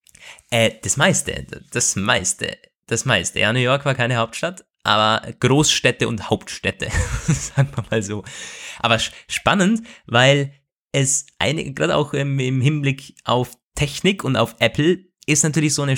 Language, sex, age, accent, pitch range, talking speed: German, male, 20-39, German, 105-140 Hz, 155 wpm